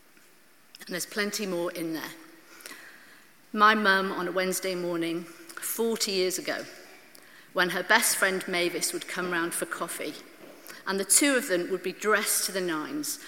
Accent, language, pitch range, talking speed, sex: British, English, 175-210 Hz, 160 wpm, female